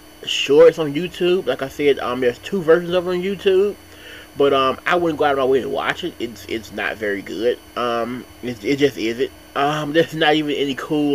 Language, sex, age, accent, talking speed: English, male, 20-39, American, 225 wpm